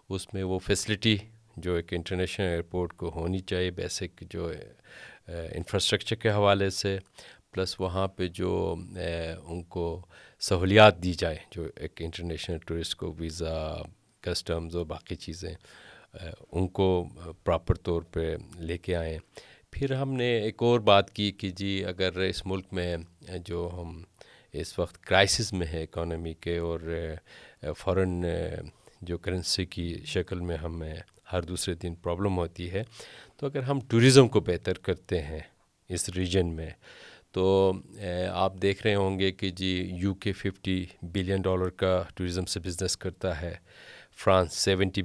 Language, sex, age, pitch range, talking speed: Urdu, male, 40-59, 85-100 Hz, 150 wpm